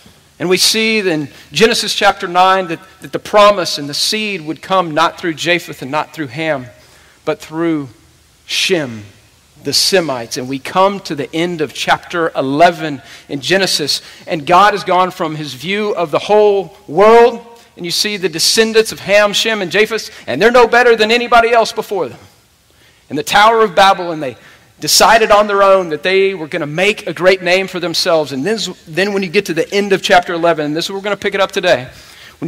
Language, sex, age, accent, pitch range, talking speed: English, male, 40-59, American, 155-200 Hz, 210 wpm